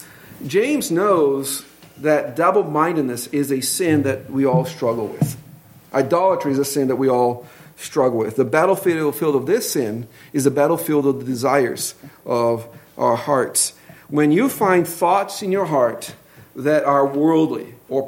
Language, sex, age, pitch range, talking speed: English, male, 50-69, 135-160 Hz, 155 wpm